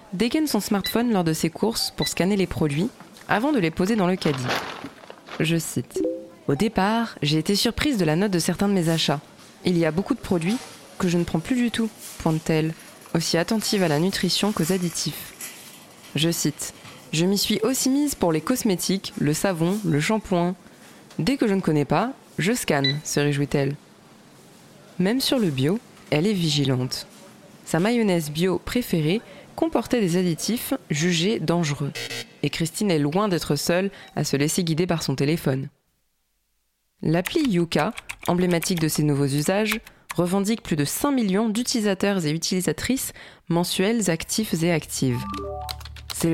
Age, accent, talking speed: 20-39, French, 165 wpm